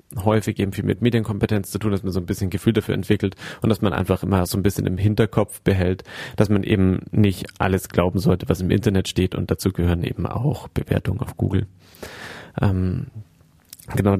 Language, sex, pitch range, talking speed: German, male, 95-110 Hz, 200 wpm